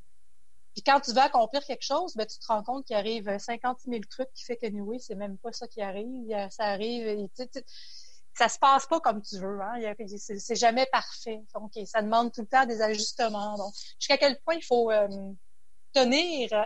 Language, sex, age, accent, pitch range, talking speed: French, female, 30-49, Canadian, 205-245 Hz, 220 wpm